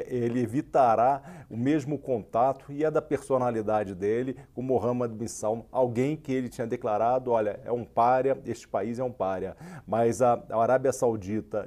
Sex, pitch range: male, 115-140 Hz